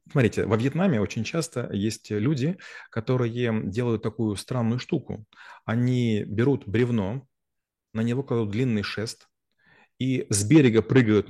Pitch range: 110-140 Hz